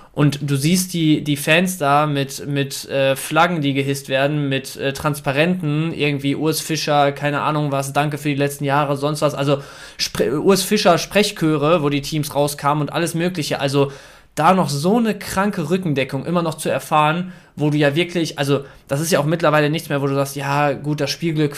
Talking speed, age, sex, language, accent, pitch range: 200 wpm, 20-39, male, German, German, 140-170 Hz